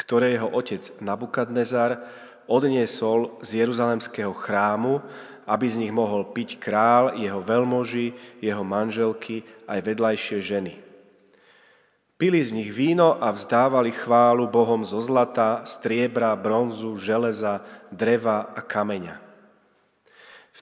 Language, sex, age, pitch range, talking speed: Slovak, male, 30-49, 110-130 Hz, 110 wpm